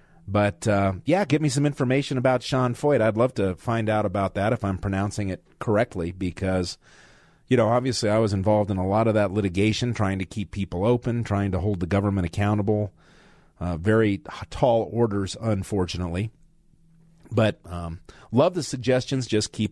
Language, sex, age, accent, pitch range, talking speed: English, male, 40-59, American, 95-125 Hz, 175 wpm